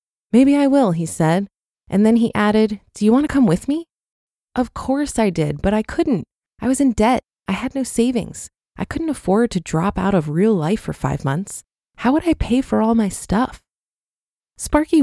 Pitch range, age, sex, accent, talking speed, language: 185-245 Hz, 20-39, female, American, 210 wpm, English